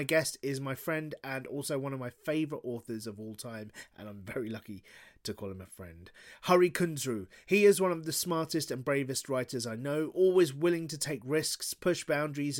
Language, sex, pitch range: English, male, 125-170 Hz